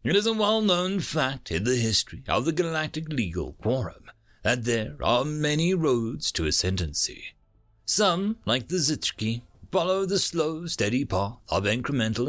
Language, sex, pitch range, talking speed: English, male, 95-160 Hz, 150 wpm